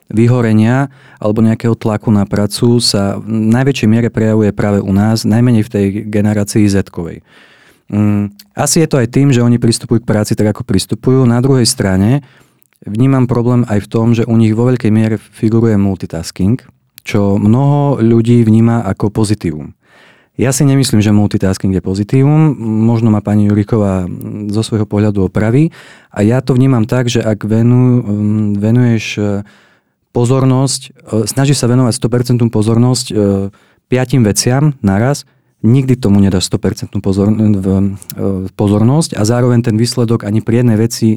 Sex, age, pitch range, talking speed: male, 30-49, 105-125 Hz, 150 wpm